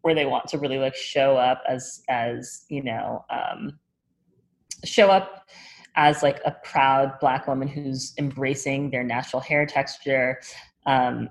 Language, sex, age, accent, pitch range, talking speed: English, female, 30-49, American, 130-155 Hz, 150 wpm